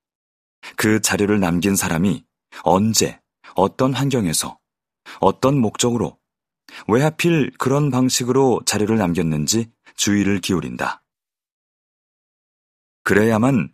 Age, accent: 30-49, native